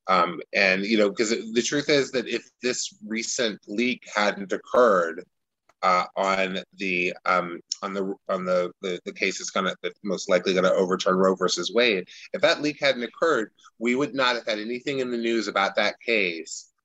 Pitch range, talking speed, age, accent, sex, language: 100-125 Hz, 190 wpm, 30-49, American, male, English